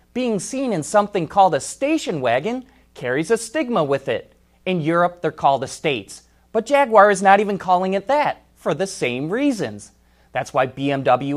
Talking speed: 175 wpm